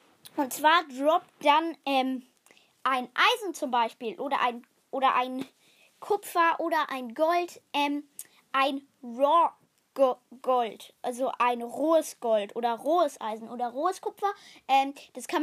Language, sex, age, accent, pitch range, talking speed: German, female, 10-29, German, 265-340 Hz, 130 wpm